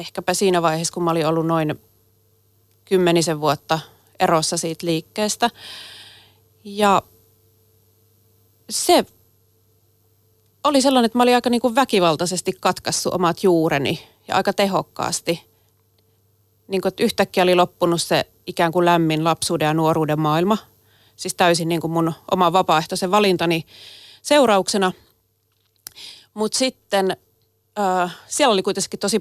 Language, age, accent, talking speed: Finnish, 30-49, native, 115 wpm